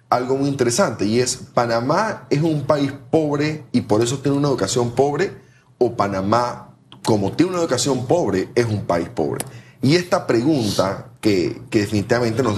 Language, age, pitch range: Spanish, 30-49, 110-135 Hz